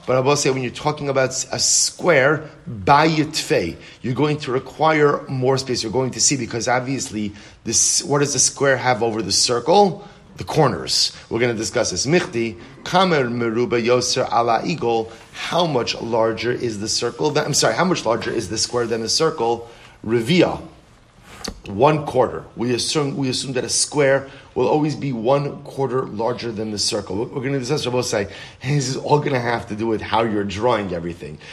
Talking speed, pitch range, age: 180 wpm, 115-140 Hz, 30-49